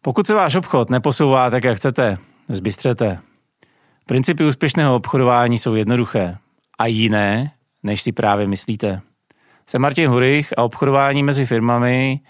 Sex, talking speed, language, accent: male, 130 wpm, Czech, native